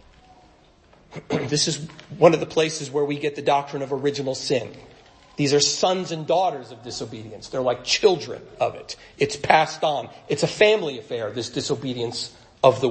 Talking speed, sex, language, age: 170 wpm, male, English, 40-59